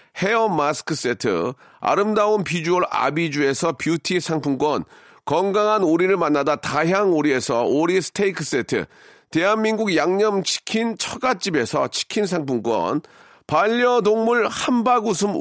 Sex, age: male, 40-59